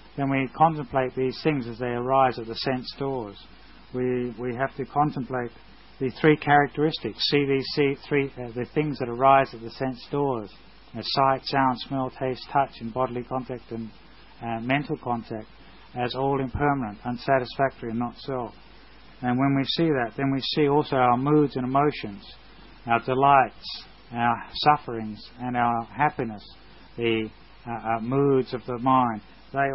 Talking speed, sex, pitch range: 160 wpm, male, 115-135 Hz